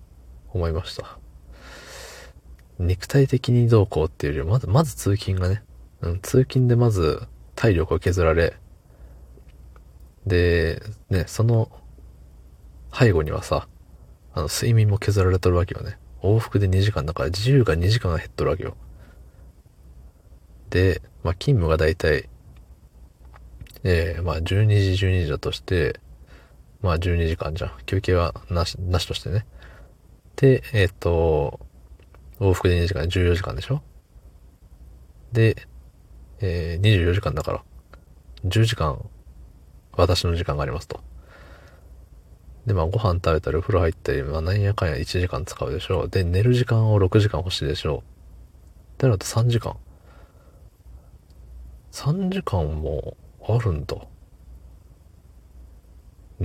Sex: male